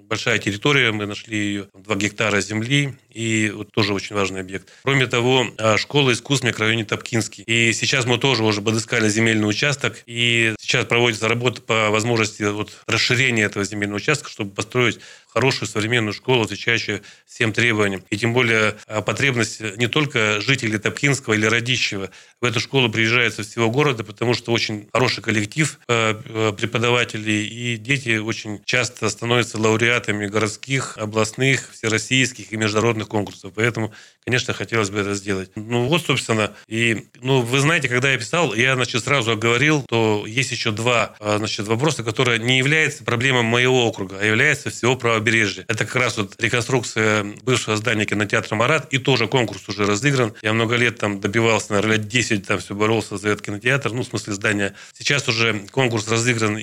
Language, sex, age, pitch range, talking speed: Russian, male, 30-49, 105-120 Hz, 165 wpm